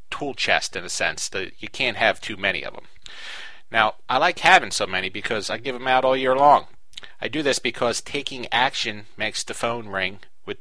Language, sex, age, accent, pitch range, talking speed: English, male, 40-59, American, 105-155 Hz, 215 wpm